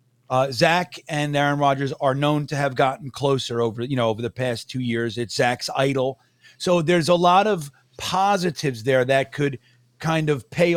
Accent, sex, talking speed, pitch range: American, male, 190 wpm, 130-165 Hz